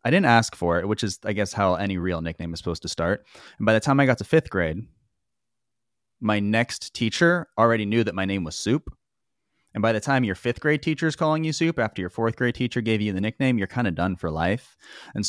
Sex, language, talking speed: male, English, 250 wpm